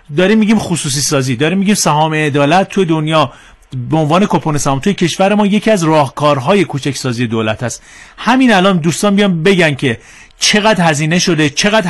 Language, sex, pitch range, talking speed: Persian, male, 145-190 Hz, 170 wpm